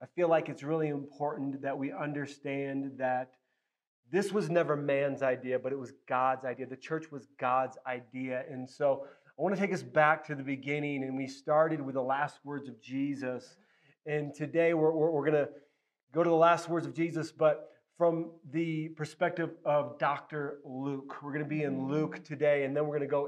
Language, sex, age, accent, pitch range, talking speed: English, male, 30-49, American, 140-170 Hz, 200 wpm